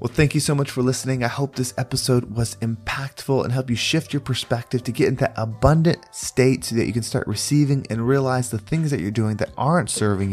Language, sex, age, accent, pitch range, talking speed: English, male, 20-39, American, 105-130 Hz, 240 wpm